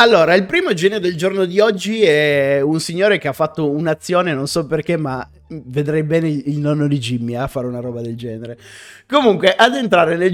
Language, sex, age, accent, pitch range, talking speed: Italian, male, 30-49, native, 150-210 Hz, 210 wpm